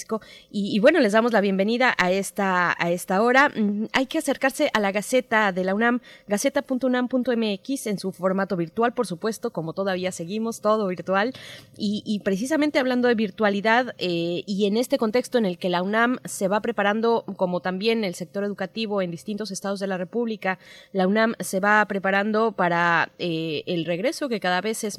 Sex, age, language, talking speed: female, 20-39, Spanish, 180 wpm